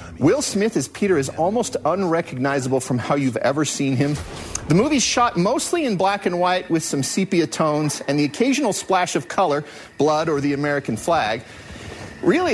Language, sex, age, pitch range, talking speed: English, male, 40-59, 140-195 Hz, 175 wpm